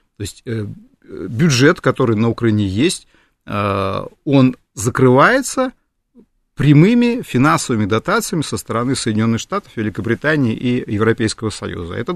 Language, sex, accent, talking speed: Russian, male, native, 105 wpm